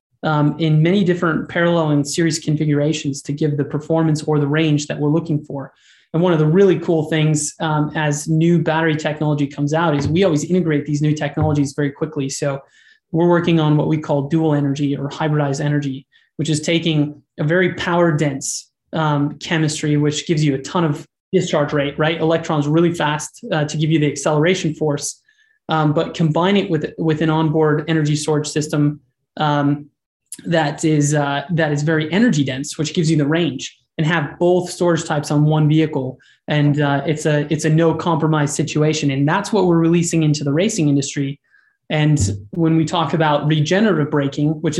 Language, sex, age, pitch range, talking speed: English, male, 20-39, 145-165 Hz, 190 wpm